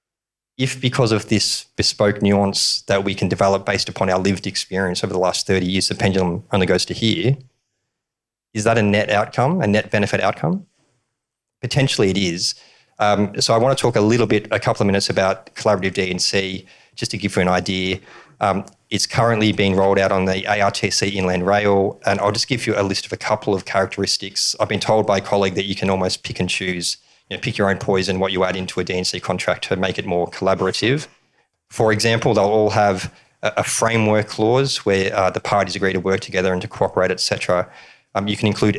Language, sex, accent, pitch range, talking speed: English, male, Australian, 95-110 Hz, 210 wpm